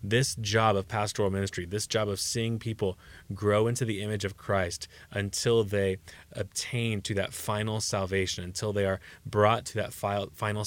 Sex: male